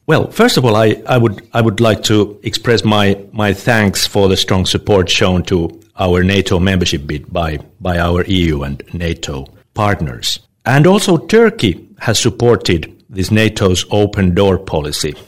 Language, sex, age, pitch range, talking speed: Hungarian, male, 60-79, 95-125 Hz, 165 wpm